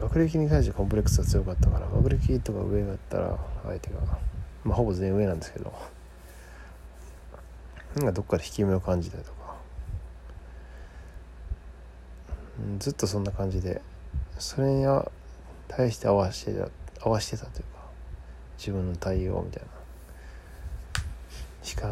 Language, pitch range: Japanese, 75-100 Hz